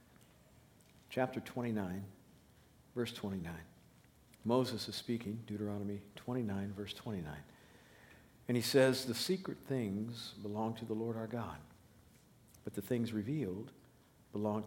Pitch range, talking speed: 100-120 Hz, 115 wpm